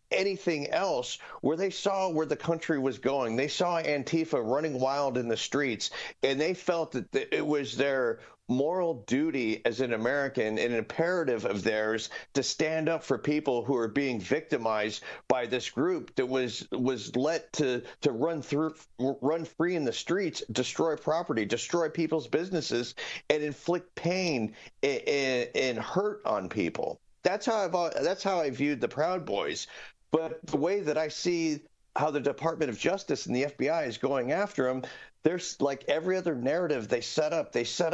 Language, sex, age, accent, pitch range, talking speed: English, male, 40-59, American, 130-170 Hz, 175 wpm